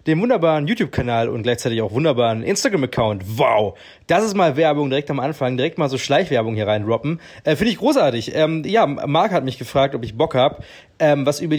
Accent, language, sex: German, German, male